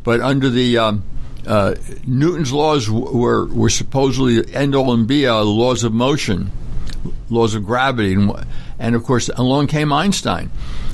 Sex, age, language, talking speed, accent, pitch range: male, 60-79, English, 160 wpm, American, 100-130 Hz